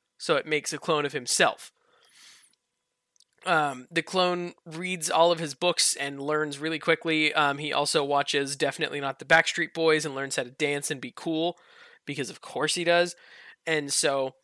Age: 20-39